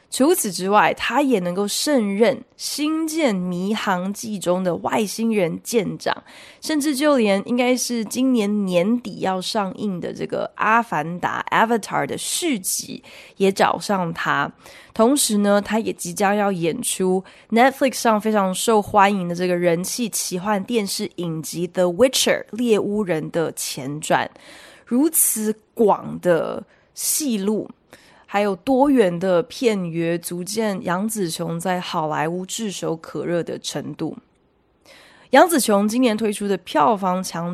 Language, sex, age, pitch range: Chinese, female, 20-39, 180-230 Hz